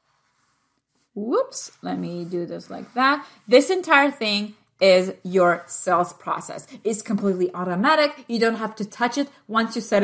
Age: 20-39